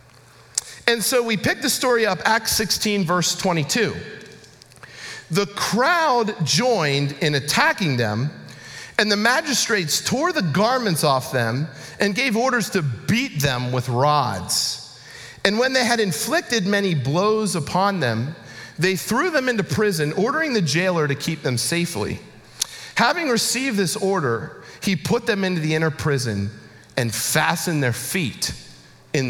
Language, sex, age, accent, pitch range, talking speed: English, male, 40-59, American, 125-200 Hz, 145 wpm